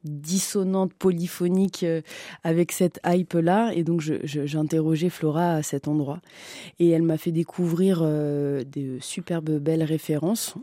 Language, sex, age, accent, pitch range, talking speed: French, female, 20-39, French, 155-180 Hz, 145 wpm